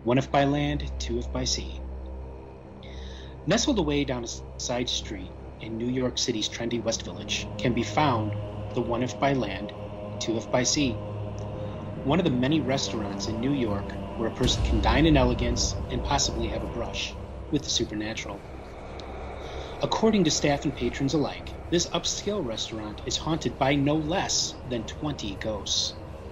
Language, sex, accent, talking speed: English, male, American, 165 wpm